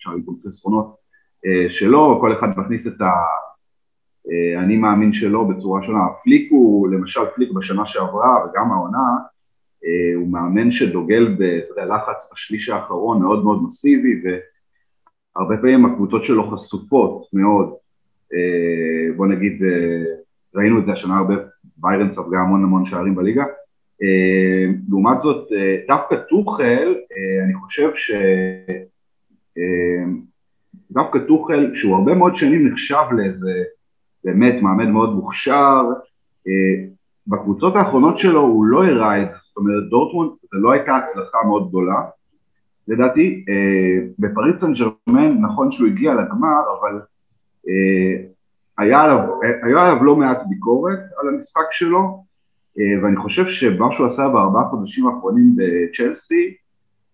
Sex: male